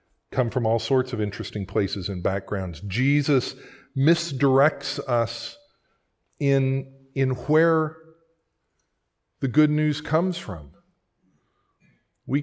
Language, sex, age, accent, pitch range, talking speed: English, male, 50-69, American, 100-140 Hz, 100 wpm